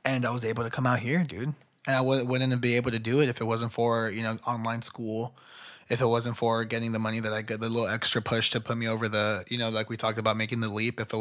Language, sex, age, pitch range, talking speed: English, male, 20-39, 115-130 Hz, 305 wpm